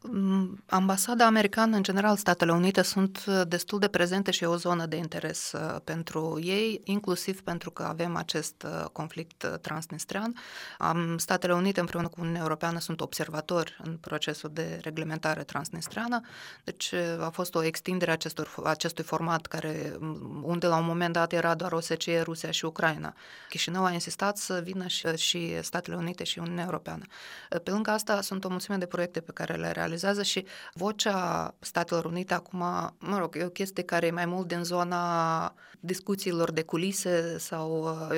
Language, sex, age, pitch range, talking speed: Romanian, female, 20-39, 165-185 Hz, 160 wpm